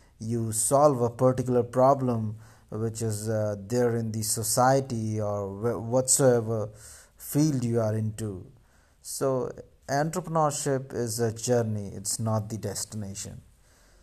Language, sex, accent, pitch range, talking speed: English, male, Indian, 110-130 Hz, 115 wpm